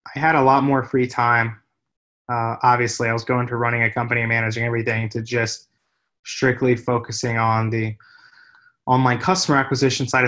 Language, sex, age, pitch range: English, male, 20-39, 115-135 Hz